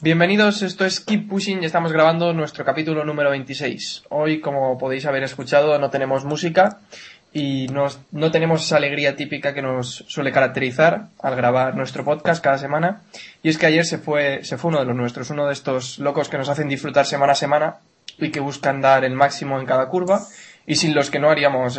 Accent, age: Spanish, 20-39